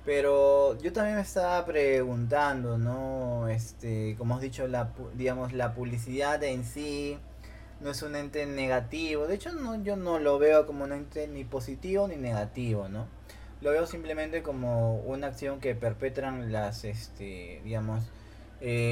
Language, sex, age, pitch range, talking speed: Spanish, male, 20-39, 115-140 Hz, 155 wpm